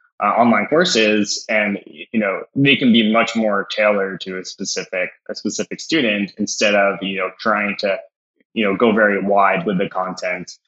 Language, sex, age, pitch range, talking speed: English, male, 10-29, 95-115 Hz, 180 wpm